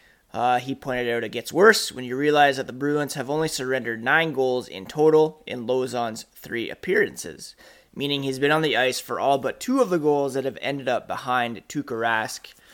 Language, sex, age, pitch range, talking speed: English, male, 30-49, 125-155 Hz, 205 wpm